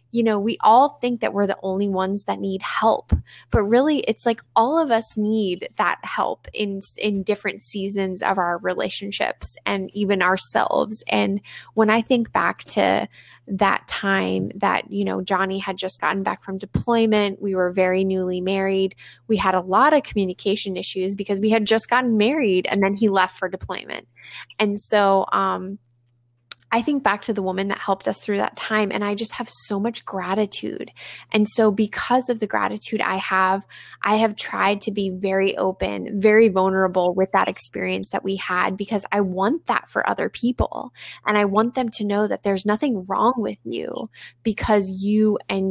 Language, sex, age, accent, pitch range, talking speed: English, female, 20-39, American, 190-215 Hz, 185 wpm